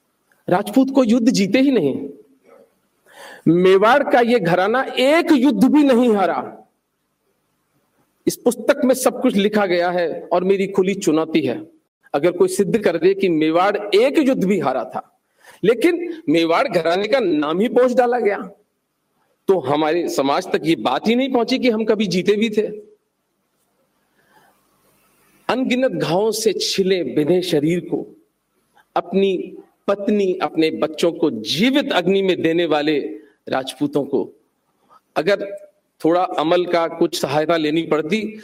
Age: 50-69